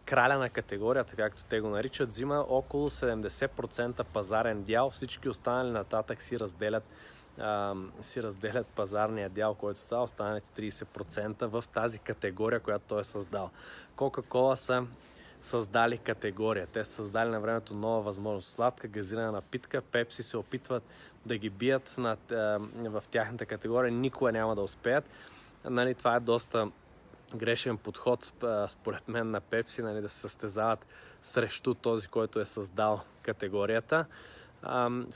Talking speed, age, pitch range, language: 135 wpm, 20-39, 110-130 Hz, Bulgarian